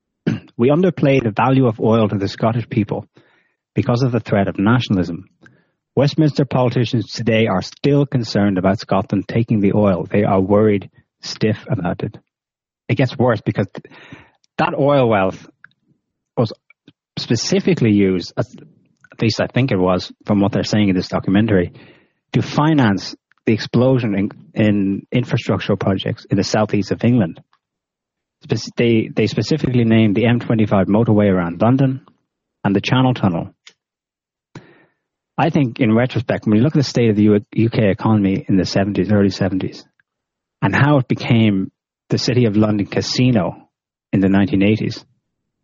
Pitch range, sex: 100-125 Hz, male